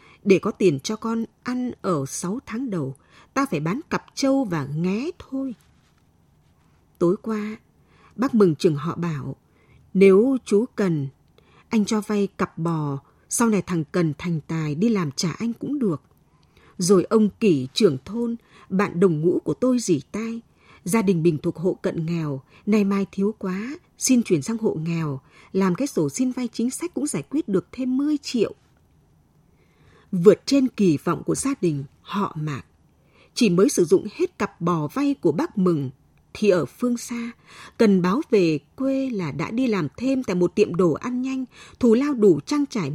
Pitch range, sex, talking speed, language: 170-235 Hz, female, 185 wpm, Vietnamese